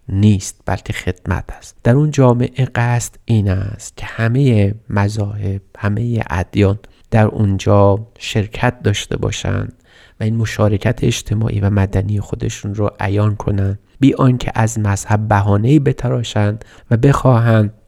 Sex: male